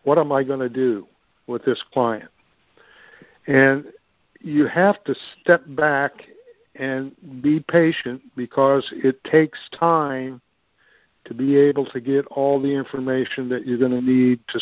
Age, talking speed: 60-79, 150 wpm